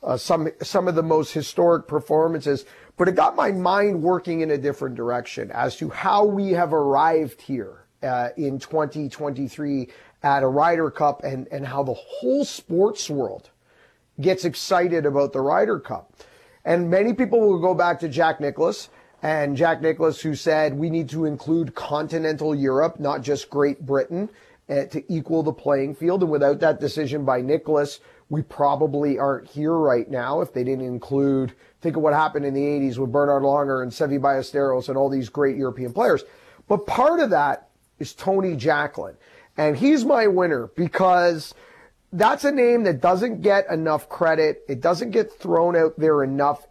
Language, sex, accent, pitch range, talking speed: English, male, American, 140-170 Hz, 175 wpm